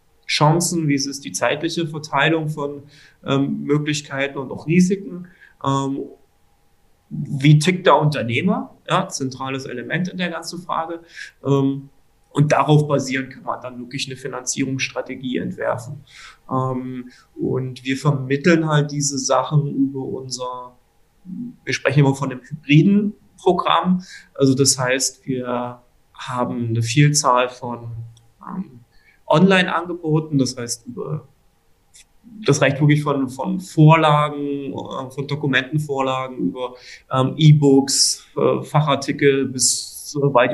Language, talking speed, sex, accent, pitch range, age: German, 115 wpm, male, German, 130-155 Hz, 30-49